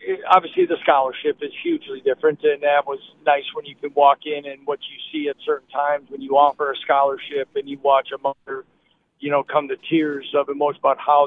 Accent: American